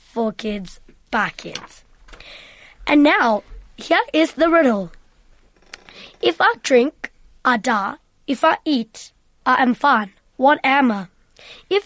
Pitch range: 240-310 Hz